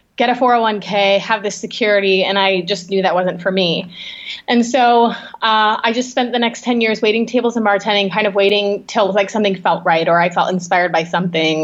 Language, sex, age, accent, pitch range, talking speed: English, female, 20-39, American, 195-240 Hz, 215 wpm